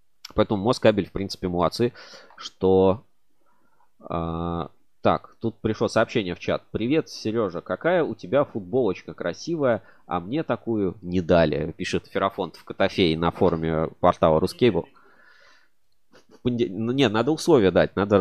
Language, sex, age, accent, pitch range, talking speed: Russian, male, 20-39, native, 90-115 Hz, 130 wpm